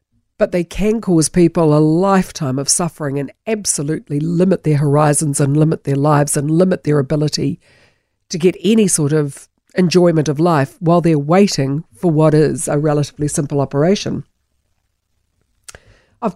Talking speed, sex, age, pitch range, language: 150 wpm, female, 50-69, 140-180 Hz, English